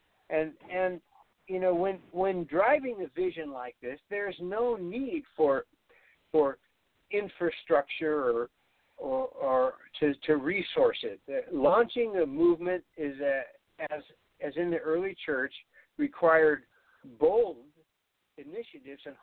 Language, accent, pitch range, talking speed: English, American, 155-205 Hz, 125 wpm